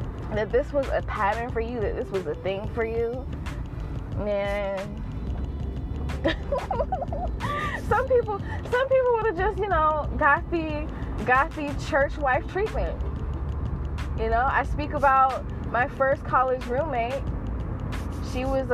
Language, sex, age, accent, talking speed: English, female, 20-39, American, 135 wpm